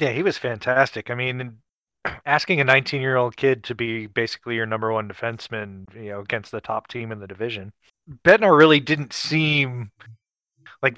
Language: English